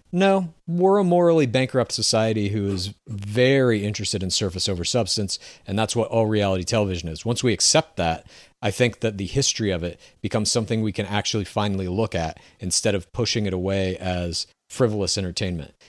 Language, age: English, 40-59